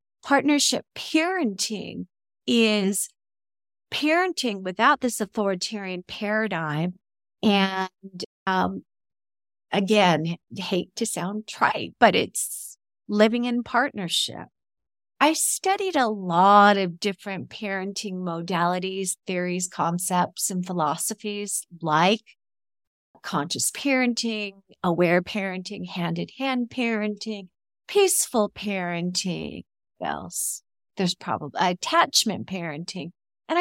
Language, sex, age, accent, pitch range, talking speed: English, female, 40-59, American, 180-230 Hz, 85 wpm